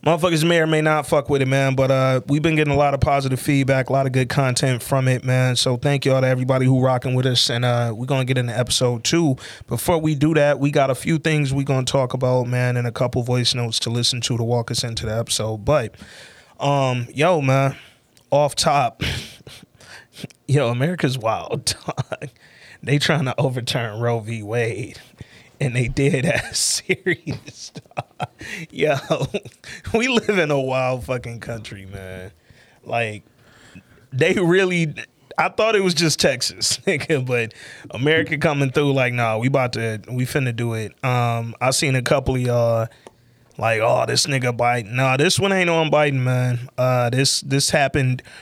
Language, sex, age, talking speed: English, male, 20-39, 190 wpm